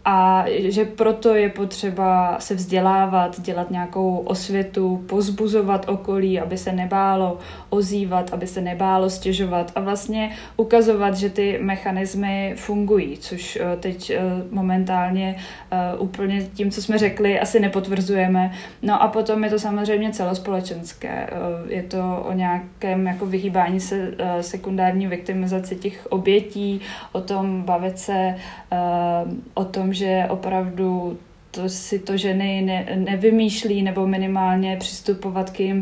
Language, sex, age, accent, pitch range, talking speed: Czech, female, 20-39, native, 185-200 Hz, 125 wpm